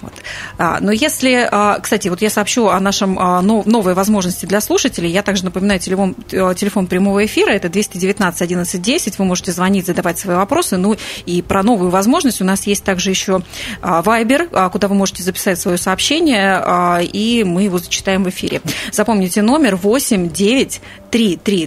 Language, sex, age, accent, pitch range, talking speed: Russian, female, 30-49, native, 180-215 Hz, 160 wpm